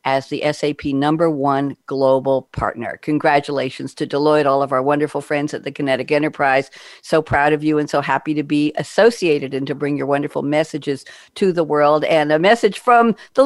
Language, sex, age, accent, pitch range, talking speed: English, female, 50-69, American, 150-195 Hz, 190 wpm